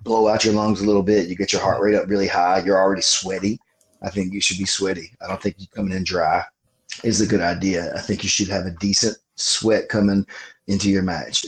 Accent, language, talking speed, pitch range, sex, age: American, English, 245 wpm, 95-105 Hz, male, 30-49